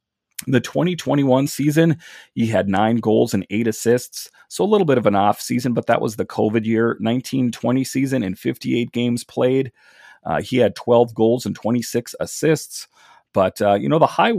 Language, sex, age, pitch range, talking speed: English, male, 30-49, 110-130 Hz, 185 wpm